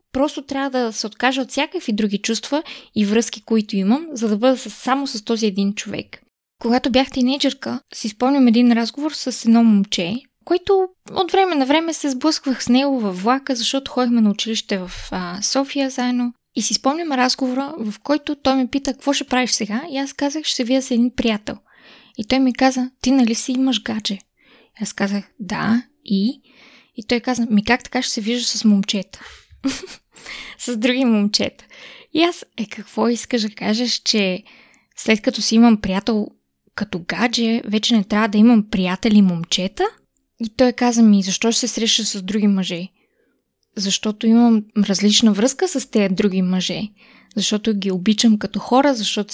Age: 20-39